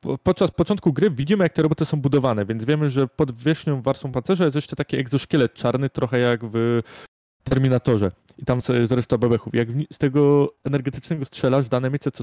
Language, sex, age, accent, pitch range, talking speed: Polish, male, 20-39, native, 115-140 Hz, 195 wpm